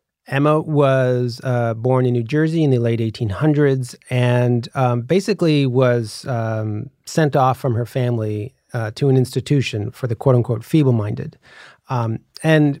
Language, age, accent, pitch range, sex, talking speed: English, 30-49, American, 125-150 Hz, male, 145 wpm